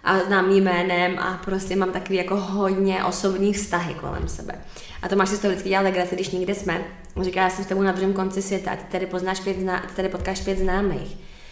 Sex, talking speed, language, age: female, 210 wpm, Czech, 20-39